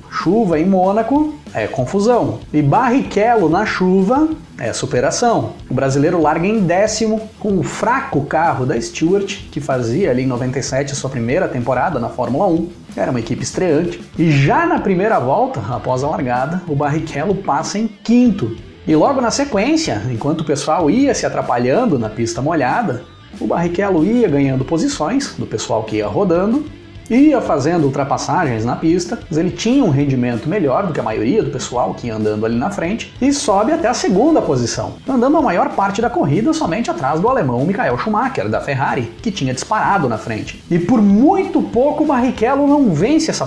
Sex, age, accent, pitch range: male, 30-49, Brazilian, 140-240 Hz